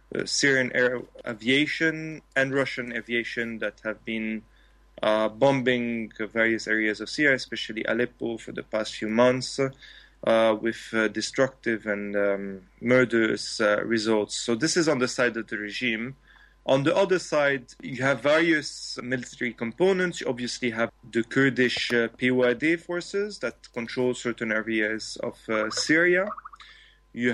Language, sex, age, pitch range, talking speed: English, male, 30-49, 115-135 Hz, 145 wpm